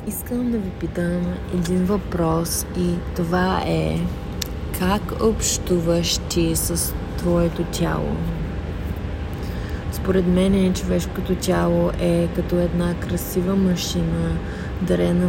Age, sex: 30-49, female